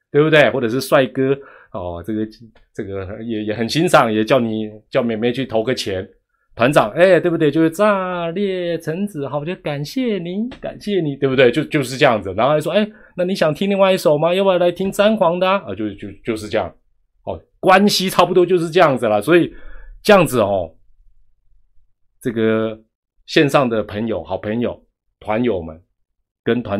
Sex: male